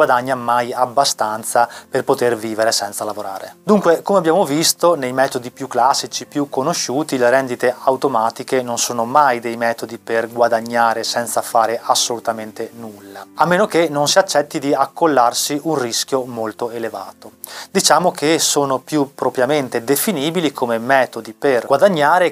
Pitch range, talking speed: 120-155 Hz, 145 wpm